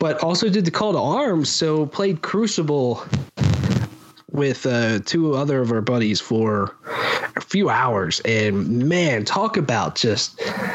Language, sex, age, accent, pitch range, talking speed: English, male, 20-39, American, 120-160 Hz, 145 wpm